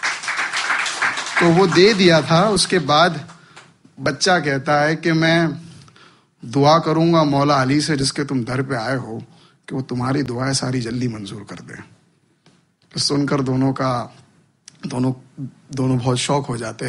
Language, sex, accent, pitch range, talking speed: Hindi, male, native, 125-145 Hz, 150 wpm